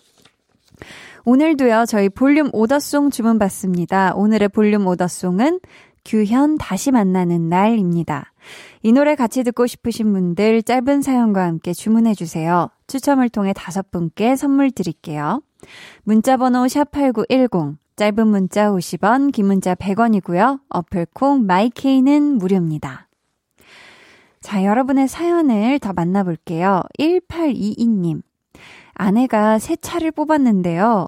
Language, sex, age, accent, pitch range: Korean, female, 20-39, native, 195-275 Hz